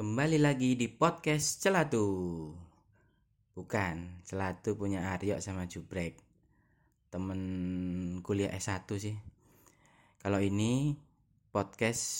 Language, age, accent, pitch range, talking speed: Indonesian, 20-39, native, 95-110 Hz, 90 wpm